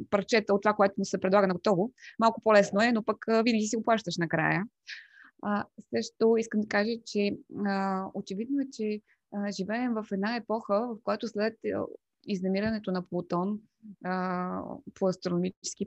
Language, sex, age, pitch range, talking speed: Bulgarian, female, 20-39, 190-220 Hz, 155 wpm